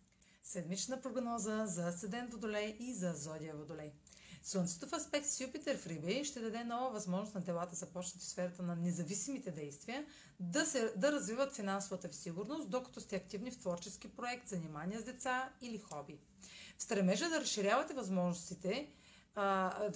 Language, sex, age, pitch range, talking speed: Bulgarian, female, 30-49, 175-235 Hz, 145 wpm